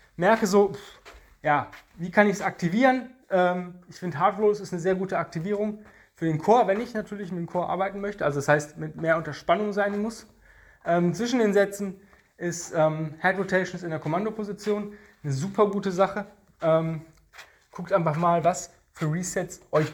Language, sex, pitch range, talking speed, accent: German, male, 150-190 Hz, 185 wpm, German